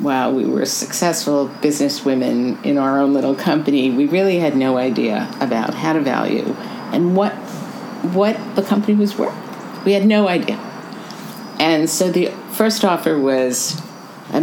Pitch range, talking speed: 140-200 Hz, 155 wpm